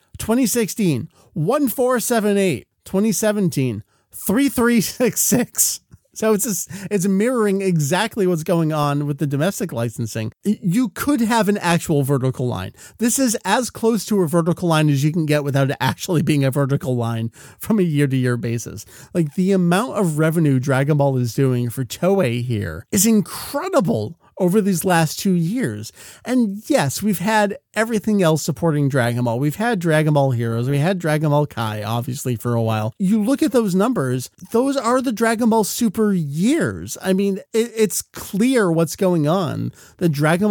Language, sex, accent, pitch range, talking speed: English, male, American, 140-210 Hz, 165 wpm